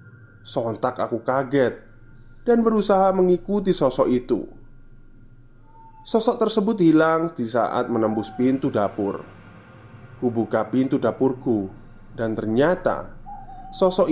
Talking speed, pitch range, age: 95 wpm, 115-155 Hz, 20-39